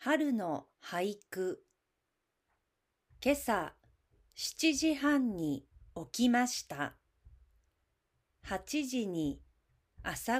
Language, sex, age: Japanese, female, 40-59